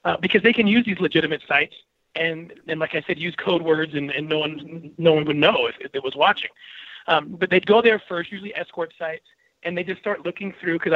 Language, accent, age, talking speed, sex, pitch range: English, American, 30-49, 245 wpm, male, 165-205 Hz